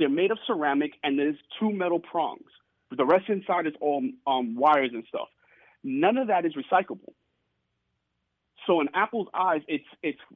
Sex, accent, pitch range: male, American, 145-200 Hz